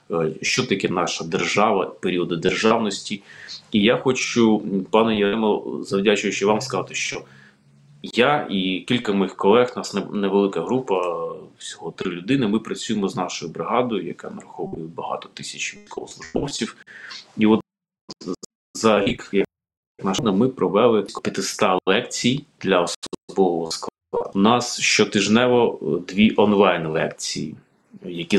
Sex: male